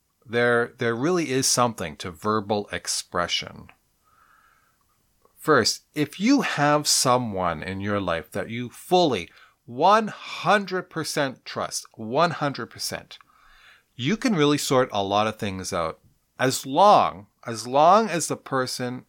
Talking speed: 120 wpm